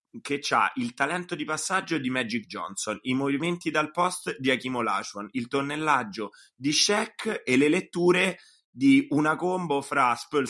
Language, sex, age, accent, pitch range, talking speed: Italian, male, 30-49, native, 110-150 Hz, 160 wpm